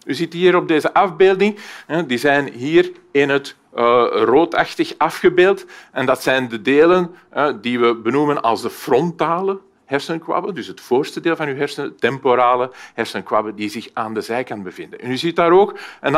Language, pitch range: Dutch, 140-230 Hz